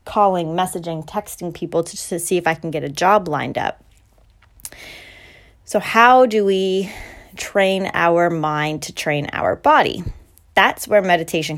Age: 20-39